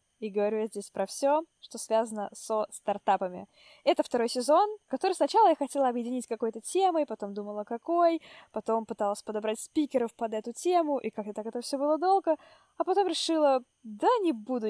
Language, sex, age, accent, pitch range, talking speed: Russian, female, 10-29, native, 220-285 Hz, 175 wpm